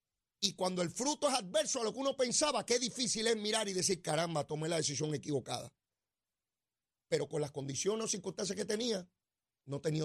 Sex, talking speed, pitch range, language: male, 190 wpm, 140-230 Hz, Spanish